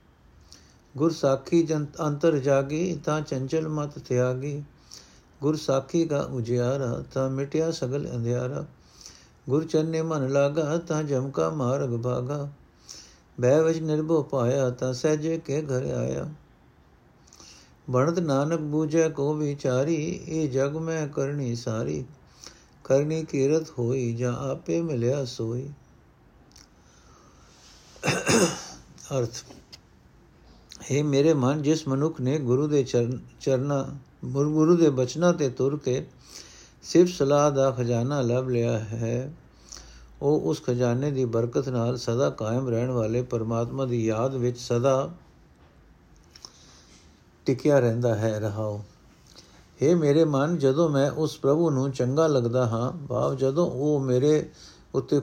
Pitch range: 120-150 Hz